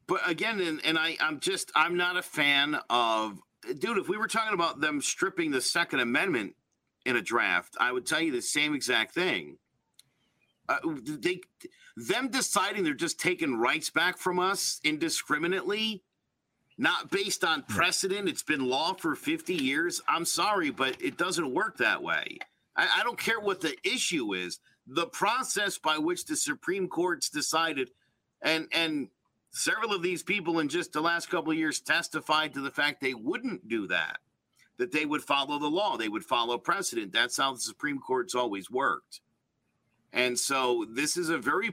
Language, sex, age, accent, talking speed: English, male, 50-69, American, 175 wpm